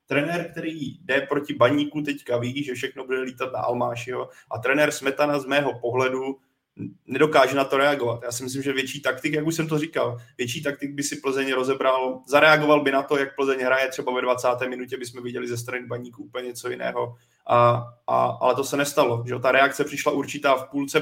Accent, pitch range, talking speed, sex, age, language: native, 130-140 Hz, 205 wpm, male, 20-39, Czech